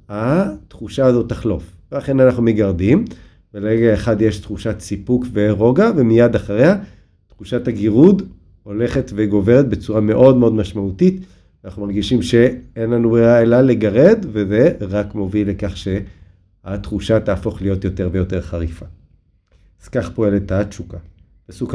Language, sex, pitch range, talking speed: Hebrew, male, 95-125 Hz, 120 wpm